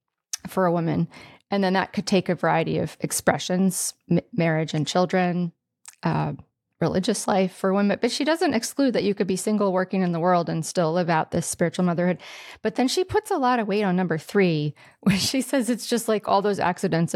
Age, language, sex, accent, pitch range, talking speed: 30-49, English, female, American, 175-210 Hz, 210 wpm